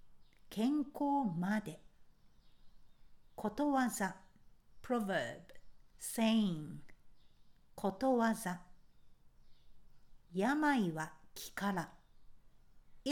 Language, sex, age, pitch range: Japanese, female, 60-79, 175-255 Hz